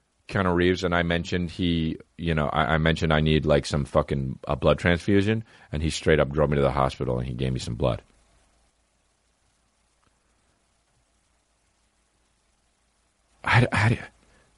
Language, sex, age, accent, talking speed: English, male, 40-59, American, 145 wpm